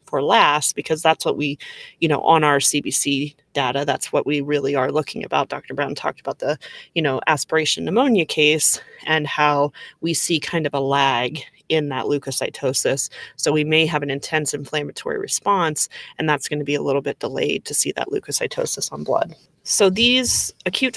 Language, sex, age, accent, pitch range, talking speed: English, female, 30-49, American, 145-175 Hz, 190 wpm